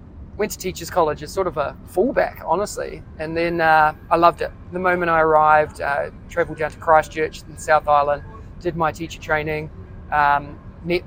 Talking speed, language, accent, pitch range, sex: 185 wpm, English, Australian, 150-175 Hz, male